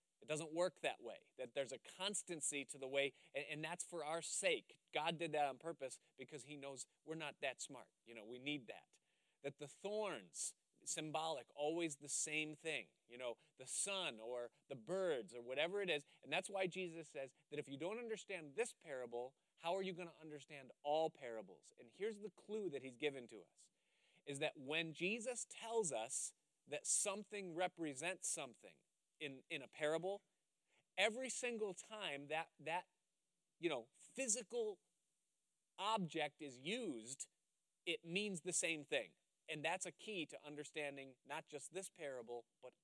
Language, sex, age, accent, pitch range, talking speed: English, male, 30-49, American, 140-185 Hz, 170 wpm